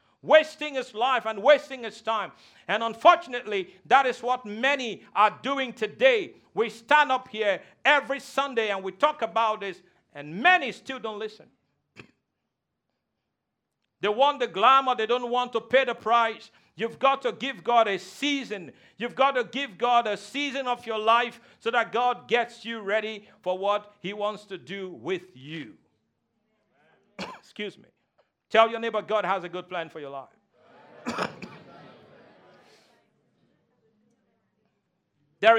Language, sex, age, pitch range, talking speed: English, male, 50-69, 205-255 Hz, 150 wpm